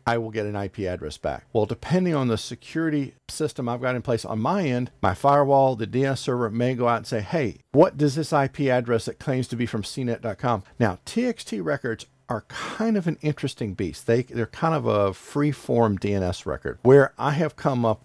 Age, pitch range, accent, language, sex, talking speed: 50-69, 105-130 Hz, American, English, male, 215 wpm